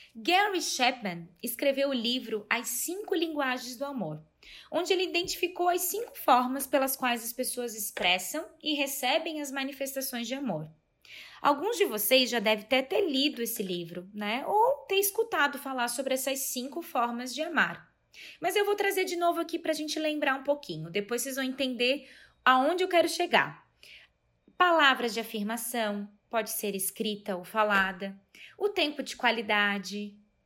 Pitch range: 220-320 Hz